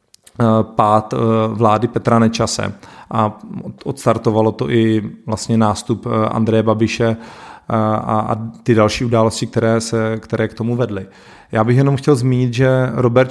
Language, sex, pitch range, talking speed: Czech, male, 115-130 Hz, 125 wpm